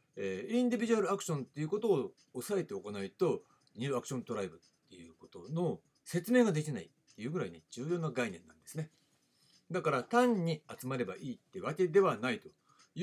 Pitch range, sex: 120-195 Hz, male